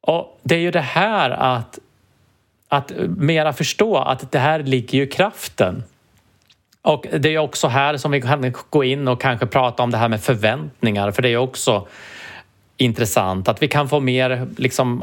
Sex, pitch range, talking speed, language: male, 115-140 Hz, 180 wpm, English